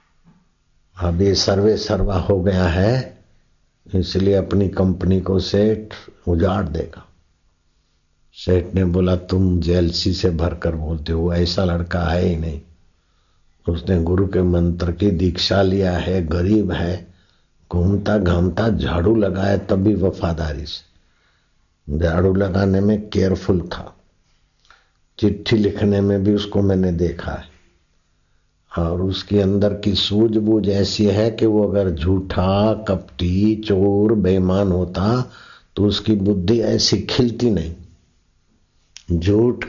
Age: 60-79